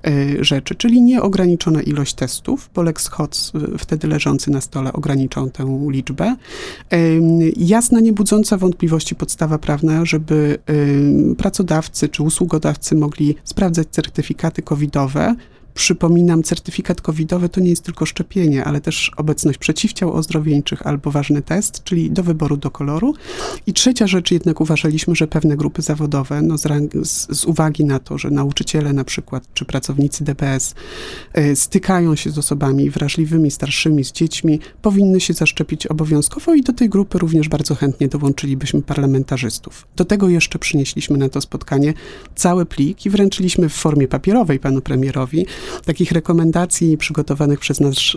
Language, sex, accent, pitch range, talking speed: Polish, male, native, 145-180 Hz, 140 wpm